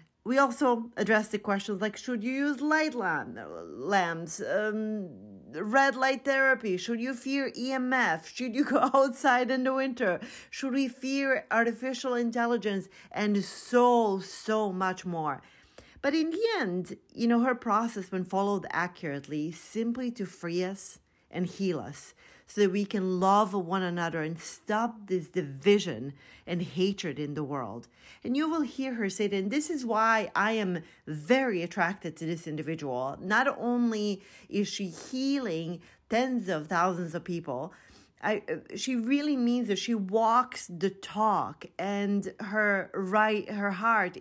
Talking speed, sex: 150 wpm, female